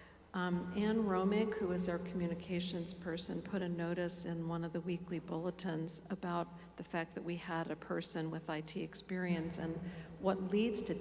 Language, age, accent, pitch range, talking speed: English, 50-69, American, 165-195 Hz, 175 wpm